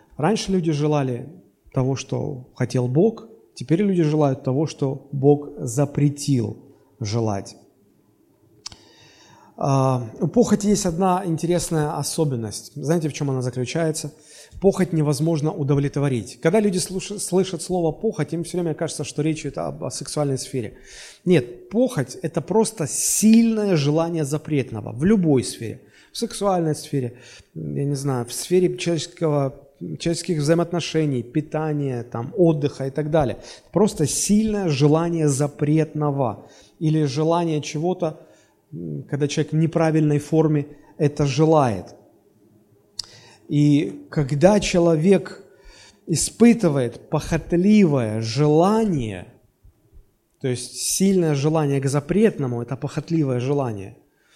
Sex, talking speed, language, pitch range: male, 110 wpm, Russian, 135-170 Hz